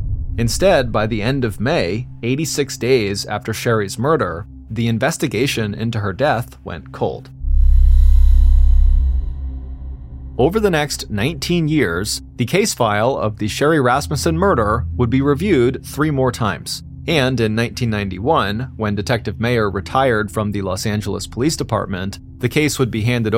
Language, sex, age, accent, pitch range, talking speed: English, male, 30-49, American, 100-125 Hz, 140 wpm